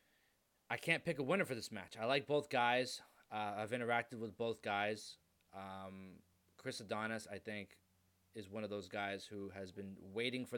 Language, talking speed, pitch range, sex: English, 185 wpm, 100-125 Hz, male